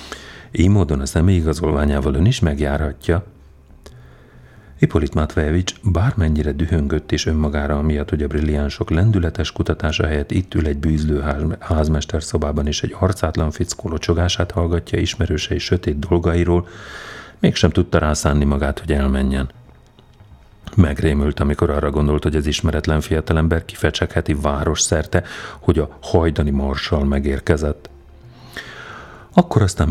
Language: Hungarian